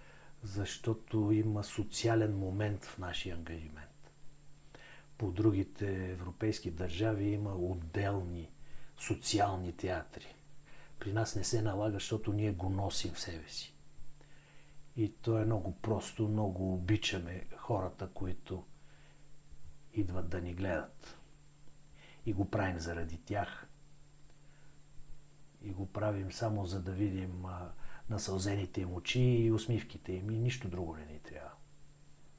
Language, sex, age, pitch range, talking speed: Bulgarian, male, 60-79, 90-125 Hz, 120 wpm